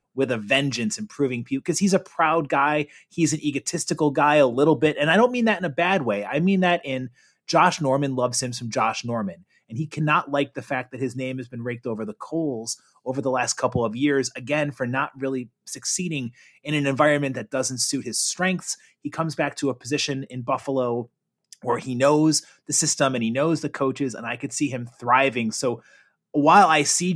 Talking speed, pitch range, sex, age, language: 220 wpm, 125-155 Hz, male, 30-49, English